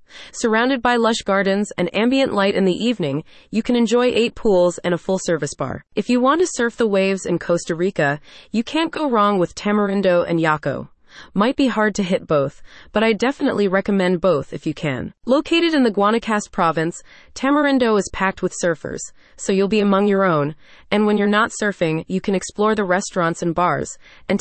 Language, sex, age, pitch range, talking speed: English, female, 30-49, 170-230 Hz, 195 wpm